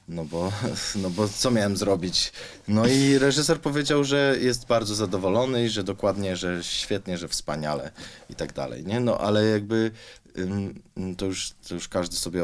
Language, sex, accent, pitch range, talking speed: Polish, male, native, 85-110 Hz, 170 wpm